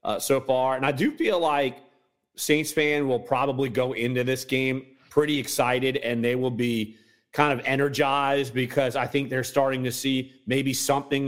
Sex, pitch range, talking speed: male, 120-145 Hz, 180 wpm